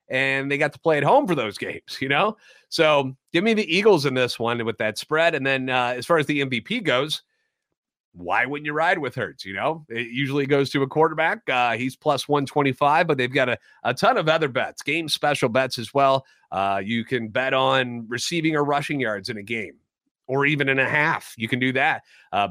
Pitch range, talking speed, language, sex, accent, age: 130-160 Hz, 230 wpm, English, male, American, 30-49